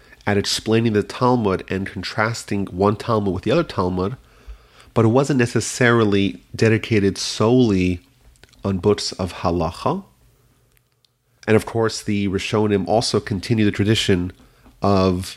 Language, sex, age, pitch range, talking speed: English, male, 30-49, 95-125 Hz, 125 wpm